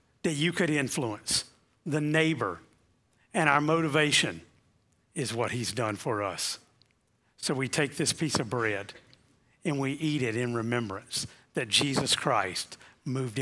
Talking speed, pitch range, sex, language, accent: 145 wpm, 120-160 Hz, male, English, American